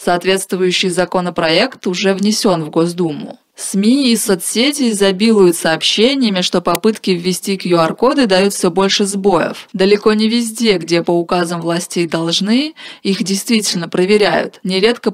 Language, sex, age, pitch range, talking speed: Russian, female, 20-39, 175-210 Hz, 125 wpm